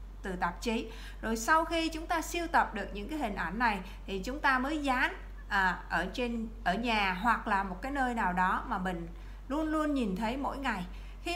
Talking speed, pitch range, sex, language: 220 wpm, 220-290 Hz, female, Vietnamese